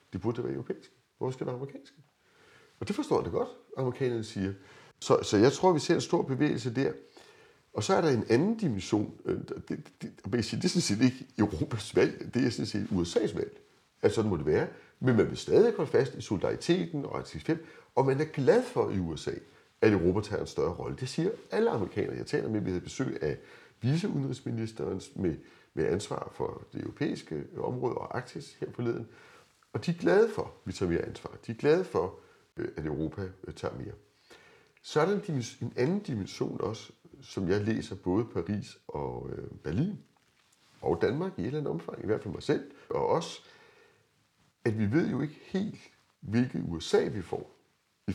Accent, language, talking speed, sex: native, Danish, 200 wpm, male